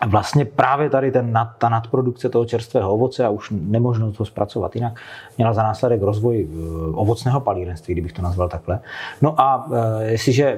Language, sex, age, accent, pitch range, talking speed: Czech, male, 30-49, native, 100-125 Hz, 160 wpm